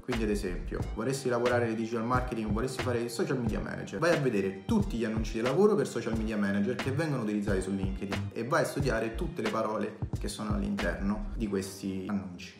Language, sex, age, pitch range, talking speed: Italian, male, 30-49, 100-130 Hz, 215 wpm